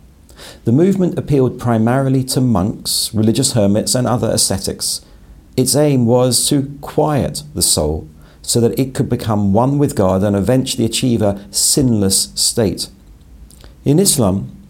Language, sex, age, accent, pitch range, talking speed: English, male, 50-69, British, 90-130 Hz, 140 wpm